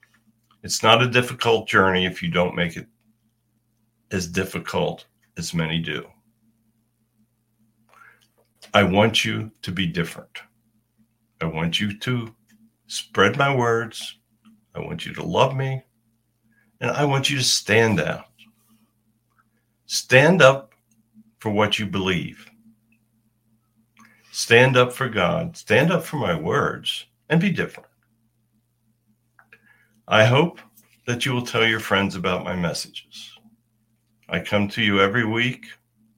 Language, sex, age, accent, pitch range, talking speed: English, male, 60-79, American, 105-115 Hz, 125 wpm